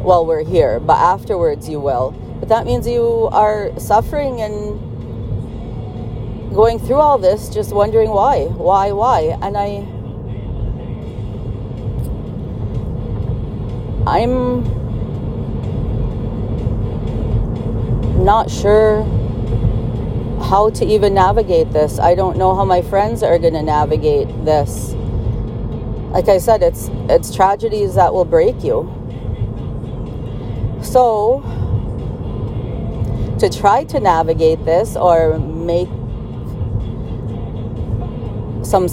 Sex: female